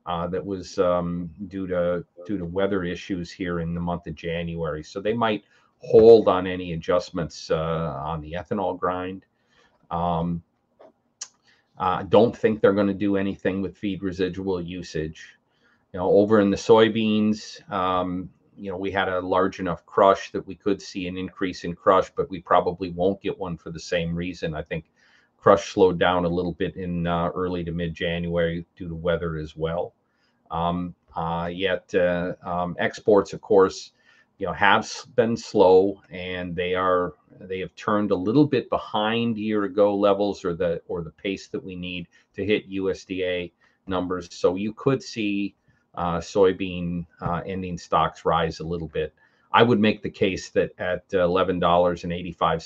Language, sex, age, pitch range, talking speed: English, male, 40-59, 85-100 Hz, 180 wpm